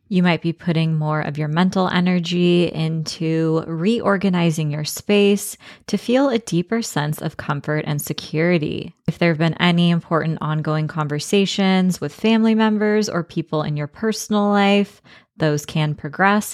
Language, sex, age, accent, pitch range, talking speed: English, female, 20-39, American, 155-190 Hz, 150 wpm